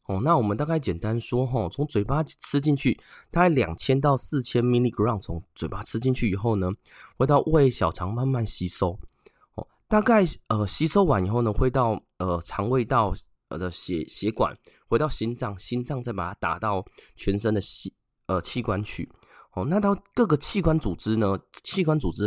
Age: 20-39